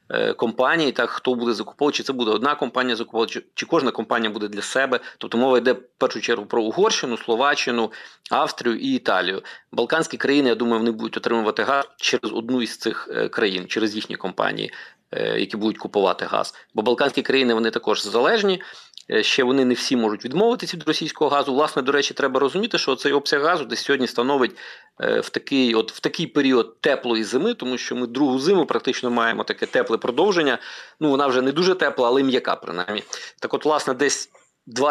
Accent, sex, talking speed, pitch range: native, male, 185 wpm, 120-165 Hz